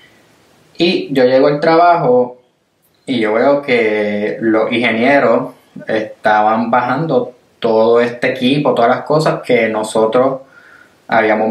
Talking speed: 115 wpm